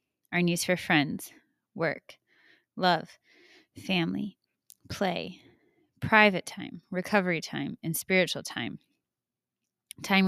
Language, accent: English, American